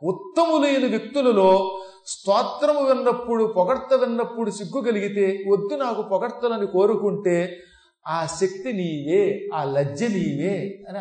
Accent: native